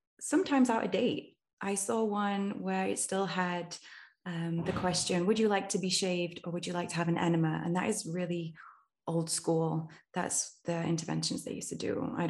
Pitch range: 165-190 Hz